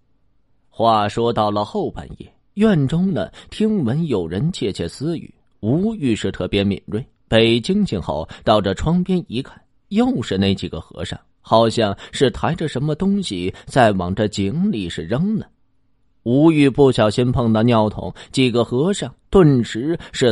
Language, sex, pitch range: Chinese, male, 100-145 Hz